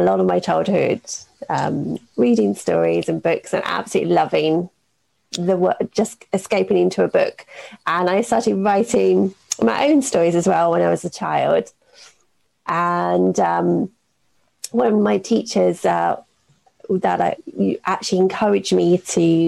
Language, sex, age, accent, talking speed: English, female, 30-49, British, 140 wpm